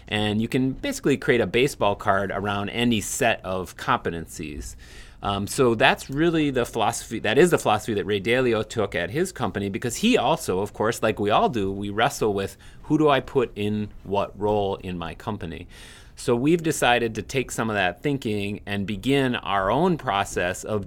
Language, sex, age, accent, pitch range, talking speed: English, male, 30-49, American, 100-115 Hz, 195 wpm